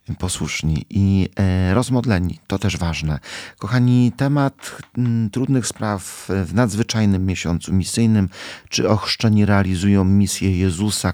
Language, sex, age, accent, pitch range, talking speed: Polish, male, 40-59, native, 85-105 Hz, 100 wpm